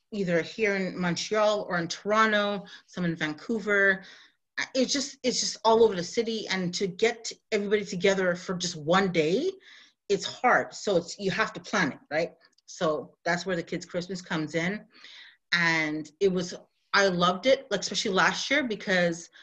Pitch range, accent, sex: 175-205 Hz, American, female